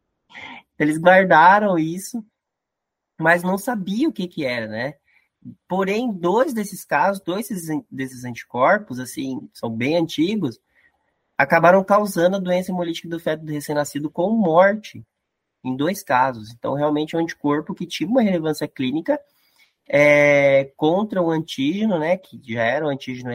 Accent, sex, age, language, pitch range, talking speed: Brazilian, male, 20-39, Portuguese, 145-205 Hz, 140 wpm